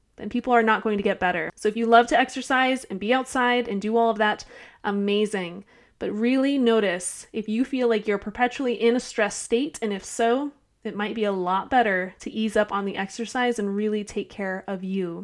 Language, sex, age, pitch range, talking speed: English, female, 20-39, 210-250 Hz, 225 wpm